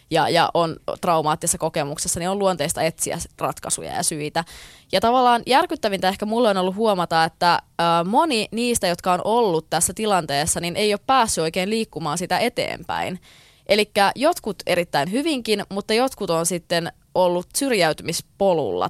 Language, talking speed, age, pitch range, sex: Finnish, 145 wpm, 20-39, 155-190 Hz, female